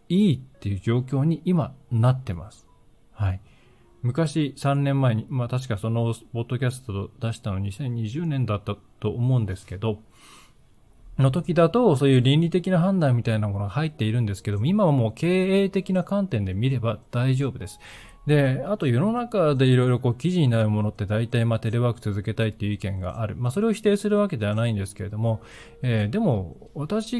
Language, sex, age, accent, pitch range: Japanese, male, 20-39, native, 105-140 Hz